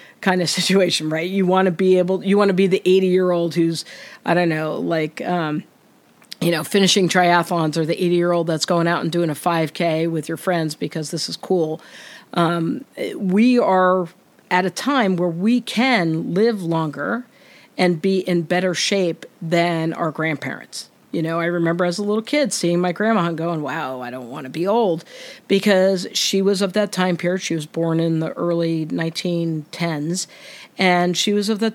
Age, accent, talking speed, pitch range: 50-69, American, 195 wpm, 170-210 Hz